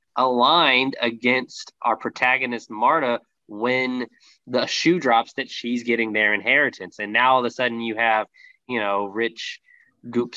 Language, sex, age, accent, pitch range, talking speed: English, male, 20-39, American, 115-160 Hz, 150 wpm